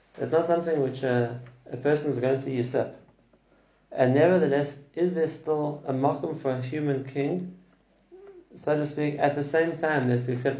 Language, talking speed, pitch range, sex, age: English, 180 wpm, 125-145 Hz, male, 30-49